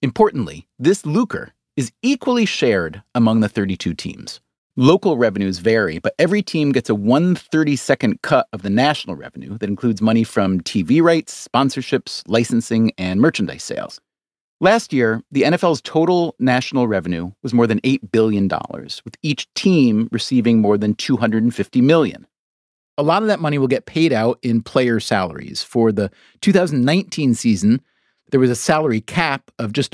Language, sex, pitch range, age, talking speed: English, male, 110-160 Hz, 30-49, 160 wpm